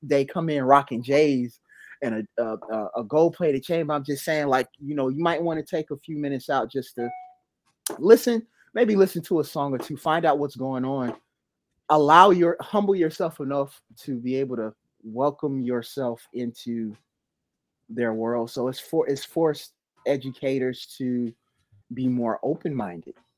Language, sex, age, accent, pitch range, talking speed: English, male, 20-39, American, 120-155 Hz, 165 wpm